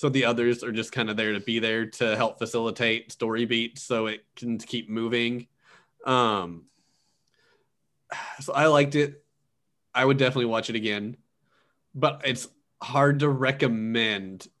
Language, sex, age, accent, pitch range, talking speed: English, male, 20-39, American, 115-140 Hz, 150 wpm